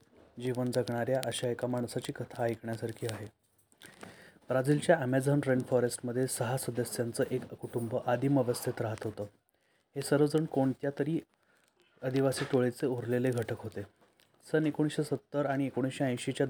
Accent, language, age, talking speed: native, Marathi, 30-49, 120 wpm